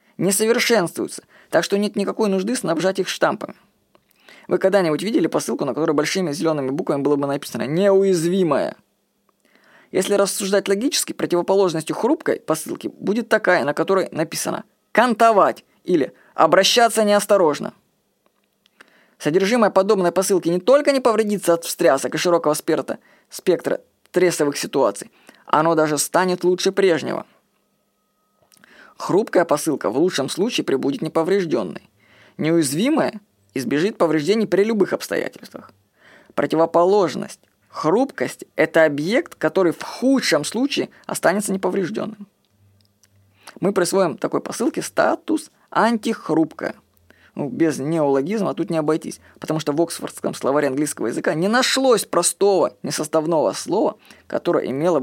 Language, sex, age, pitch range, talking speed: Russian, female, 20-39, 160-215 Hz, 115 wpm